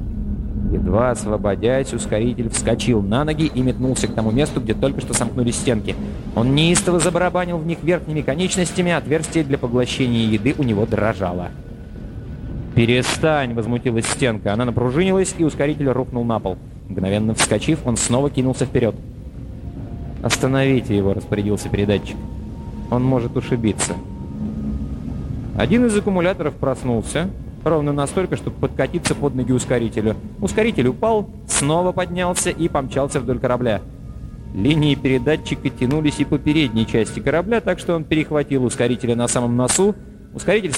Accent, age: native, 30-49